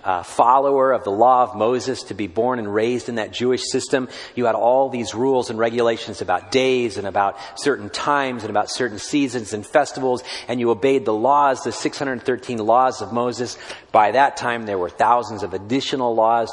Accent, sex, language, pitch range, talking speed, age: American, male, English, 110-130 Hz, 195 wpm, 40-59